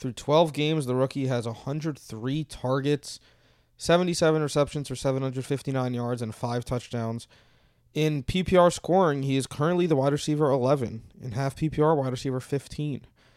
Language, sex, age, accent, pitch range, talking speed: English, male, 20-39, American, 120-150 Hz, 145 wpm